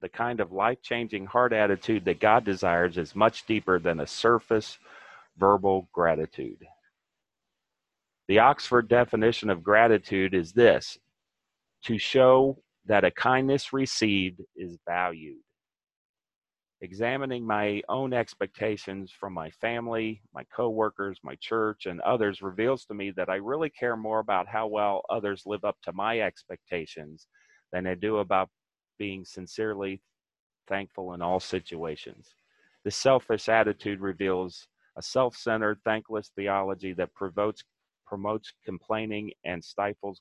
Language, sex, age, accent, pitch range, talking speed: English, male, 40-59, American, 95-115 Hz, 130 wpm